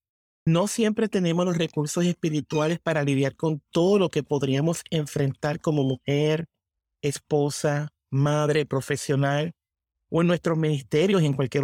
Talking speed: 135 wpm